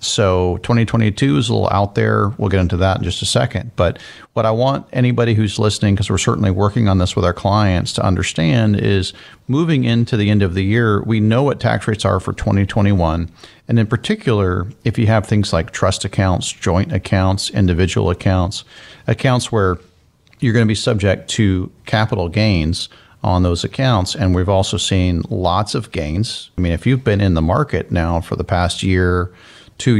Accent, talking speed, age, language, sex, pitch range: American, 195 wpm, 40-59, English, male, 90-115 Hz